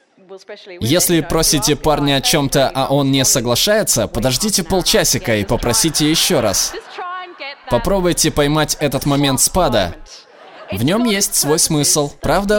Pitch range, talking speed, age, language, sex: 125-165 Hz, 125 wpm, 20-39, Russian, male